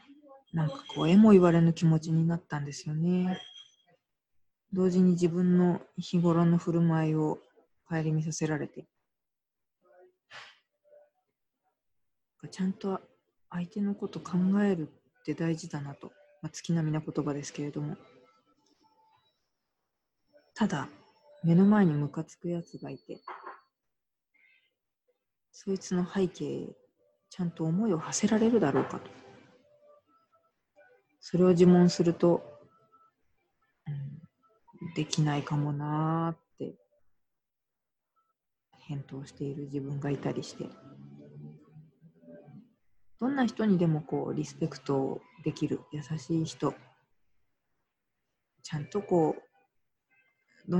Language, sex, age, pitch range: Japanese, female, 40-59, 150-190 Hz